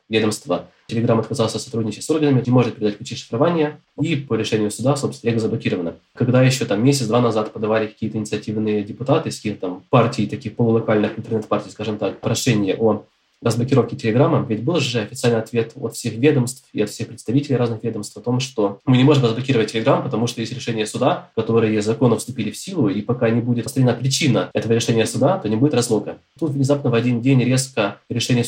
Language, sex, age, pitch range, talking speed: Russian, male, 20-39, 110-130 Hz, 190 wpm